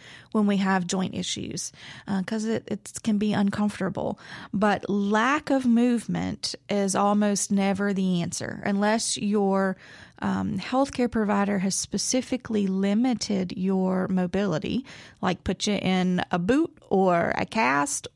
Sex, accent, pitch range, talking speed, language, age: female, American, 185-225 Hz, 130 wpm, English, 30-49